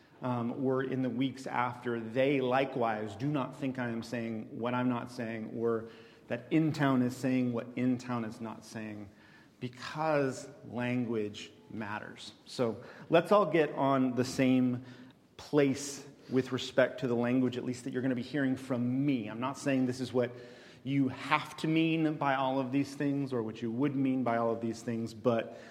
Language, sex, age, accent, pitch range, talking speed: English, male, 40-59, American, 120-145 Hz, 185 wpm